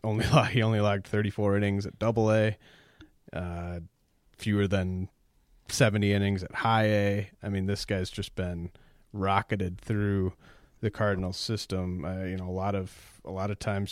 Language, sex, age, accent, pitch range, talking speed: English, male, 30-49, American, 95-105 Hz, 165 wpm